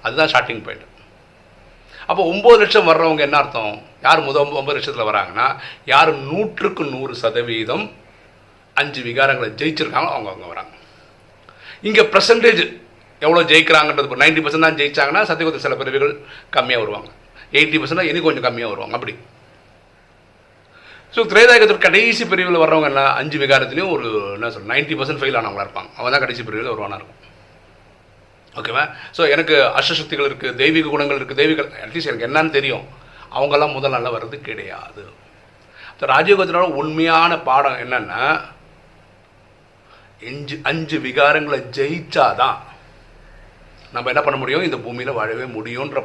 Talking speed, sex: 120 wpm, male